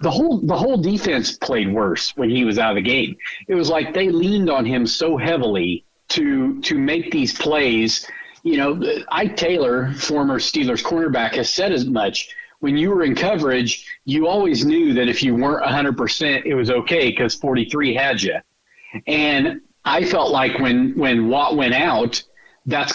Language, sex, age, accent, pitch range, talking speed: English, male, 50-69, American, 120-185 Hz, 180 wpm